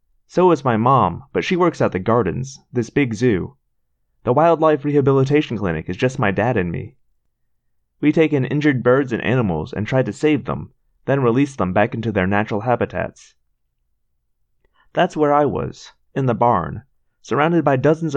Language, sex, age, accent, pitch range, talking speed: English, male, 30-49, American, 90-140 Hz, 175 wpm